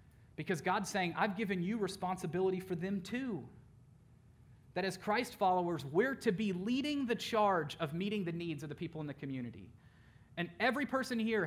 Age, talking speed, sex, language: 30-49, 180 wpm, male, English